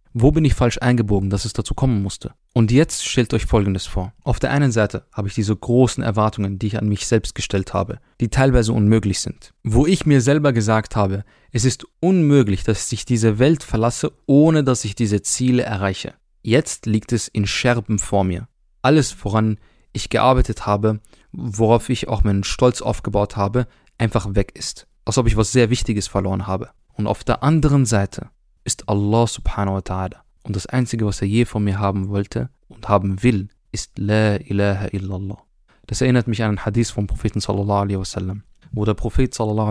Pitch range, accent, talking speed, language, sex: 100-120 Hz, German, 195 wpm, German, male